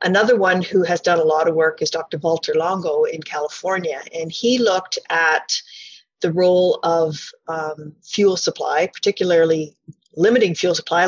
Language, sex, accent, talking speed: English, female, American, 155 wpm